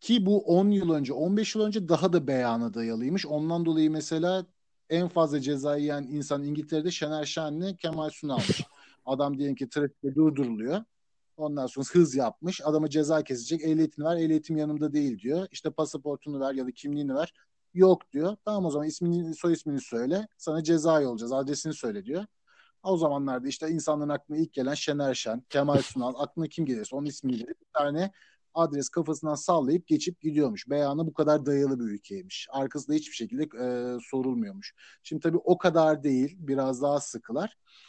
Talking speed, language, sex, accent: 170 wpm, Turkish, male, native